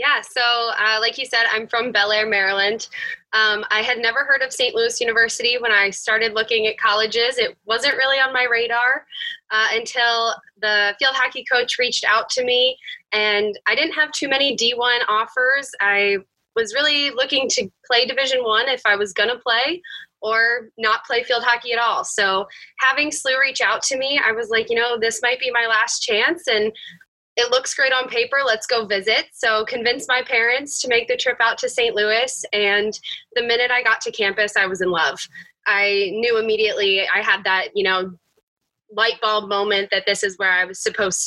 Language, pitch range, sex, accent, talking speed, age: English, 210-270 Hz, female, American, 200 wpm, 10-29